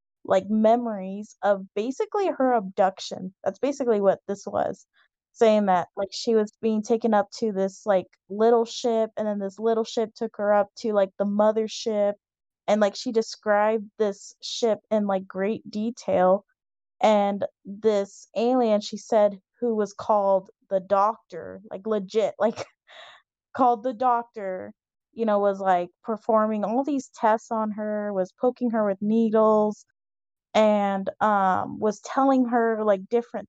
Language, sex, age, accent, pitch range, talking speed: English, female, 20-39, American, 195-225 Hz, 150 wpm